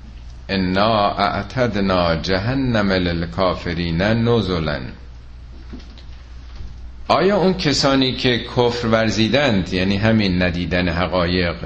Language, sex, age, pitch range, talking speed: Persian, male, 50-69, 85-125 Hz, 60 wpm